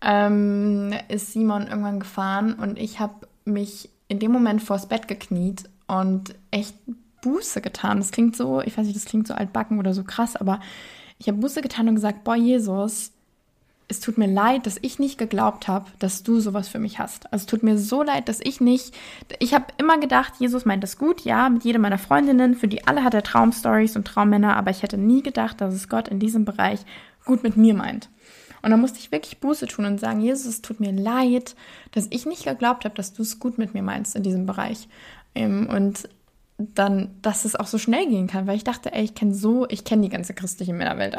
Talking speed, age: 220 wpm, 20-39